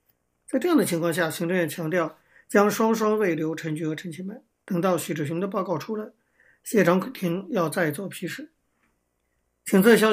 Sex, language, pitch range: male, Chinese, 165-205 Hz